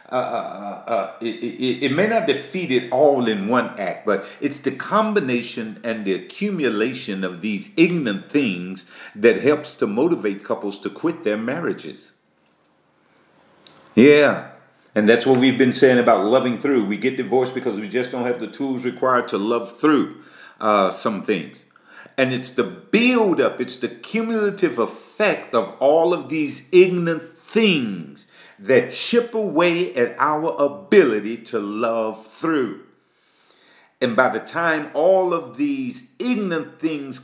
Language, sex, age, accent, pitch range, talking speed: Finnish, male, 50-69, American, 120-170 Hz, 145 wpm